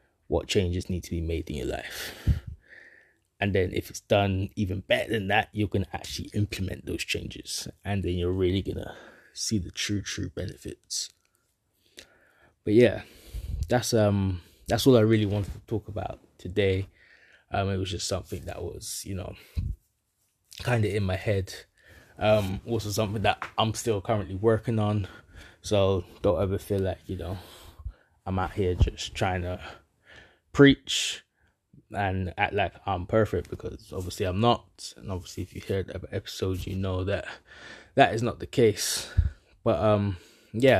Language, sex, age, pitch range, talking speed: English, male, 20-39, 95-105 Hz, 165 wpm